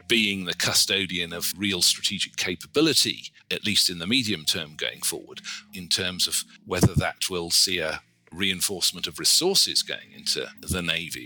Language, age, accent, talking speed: English, 40-59, British, 160 wpm